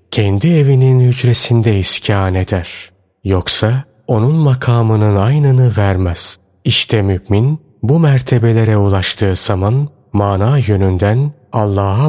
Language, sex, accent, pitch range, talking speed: Turkish, male, native, 100-130 Hz, 95 wpm